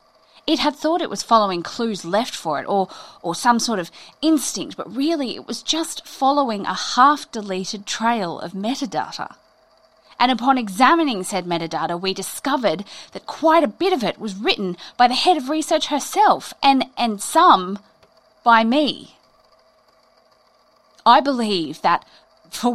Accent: Australian